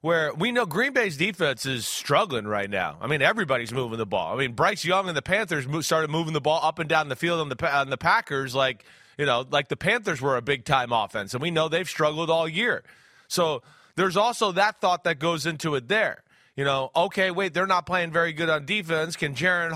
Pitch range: 145-180 Hz